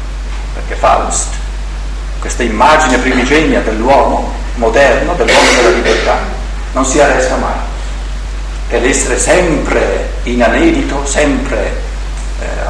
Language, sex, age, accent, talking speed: Italian, male, 50-69, native, 100 wpm